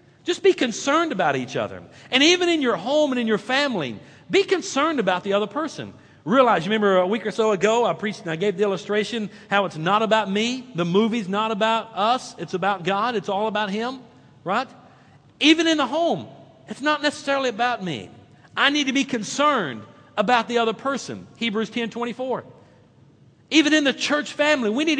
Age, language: 50-69, English